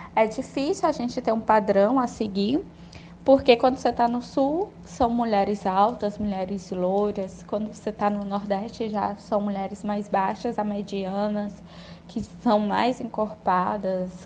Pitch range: 200-255 Hz